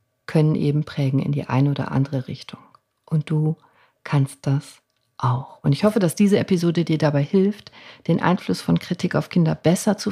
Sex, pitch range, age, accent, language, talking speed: female, 145-180 Hz, 50-69, German, German, 185 wpm